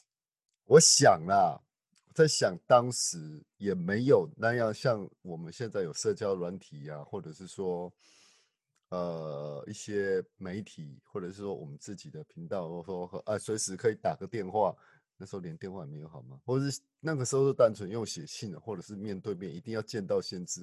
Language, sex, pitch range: Chinese, male, 100-140 Hz